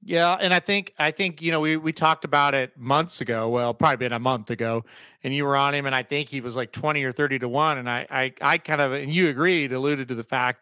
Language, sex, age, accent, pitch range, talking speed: English, male, 30-49, American, 135-170 Hz, 285 wpm